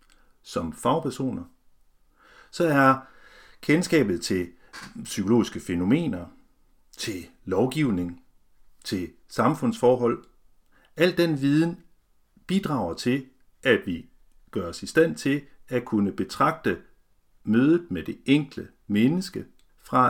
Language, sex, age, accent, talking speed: Danish, male, 60-79, native, 100 wpm